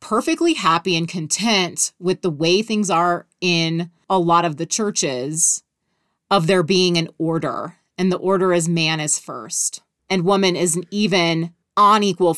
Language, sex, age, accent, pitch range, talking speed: English, female, 30-49, American, 170-205 Hz, 160 wpm